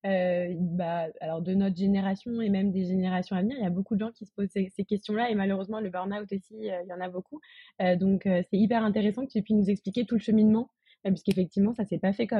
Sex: female